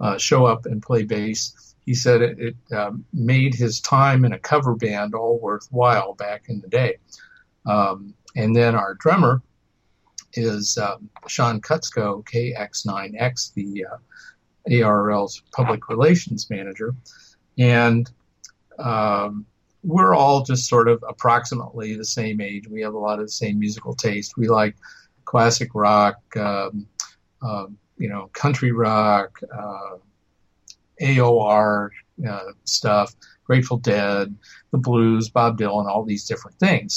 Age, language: 50-69, English